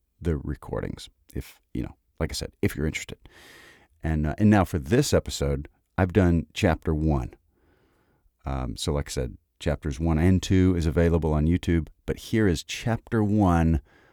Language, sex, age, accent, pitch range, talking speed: English, male, 50-69, American, 75-100 Hz, 170 wpm